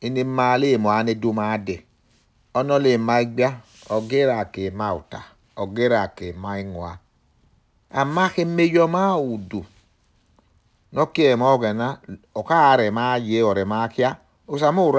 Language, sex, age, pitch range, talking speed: English, male, 60-79, 95-125 Hz, 105 wpm